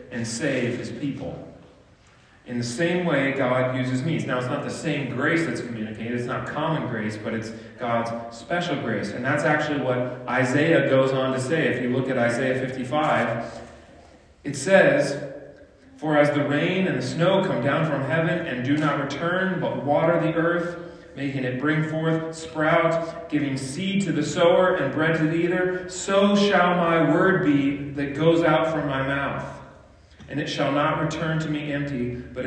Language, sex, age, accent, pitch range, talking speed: English, male, 40-59, American, 125-155 Hz, 185 wpm